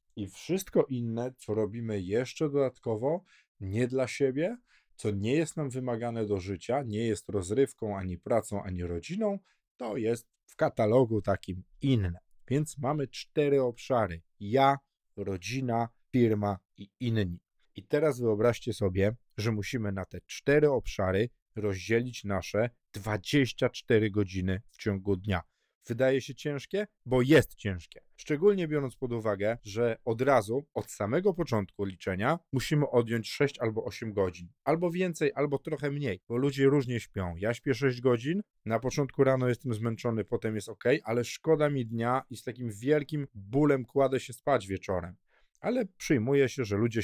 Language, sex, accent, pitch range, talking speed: Polish, male, native, 105-140 Hz, 150 wpm